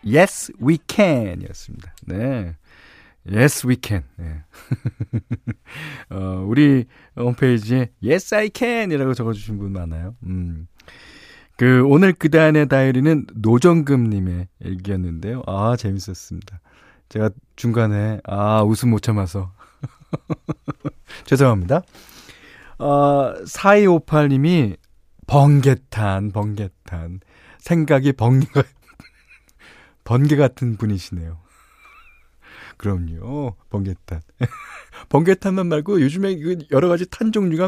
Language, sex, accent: Korean, male, native